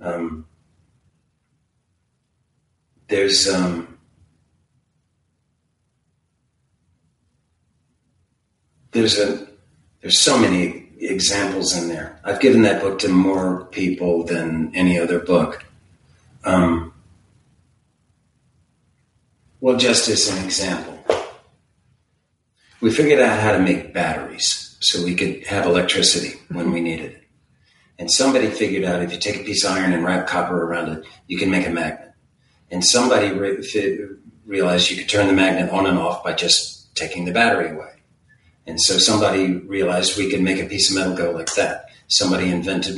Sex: male